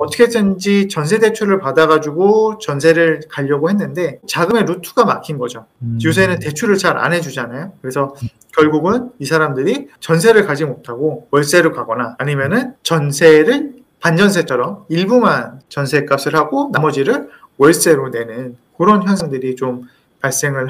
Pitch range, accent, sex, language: 140-205 Hz, native, male, Korean